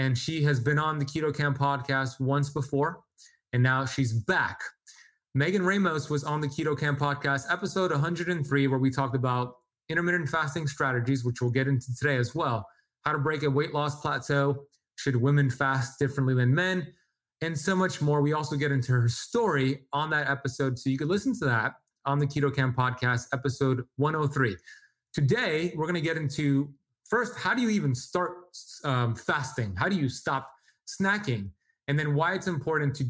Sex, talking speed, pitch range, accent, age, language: male, 185 wpm, 135-155 Hz, American, 20-39, English